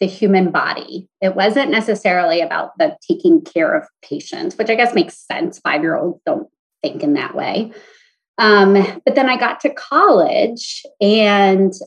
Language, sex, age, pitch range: English, female, 30-49, 185-245 Hz